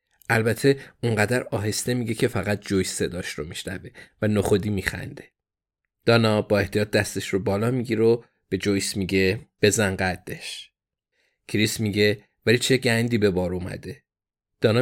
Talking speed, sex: 140 wpm, male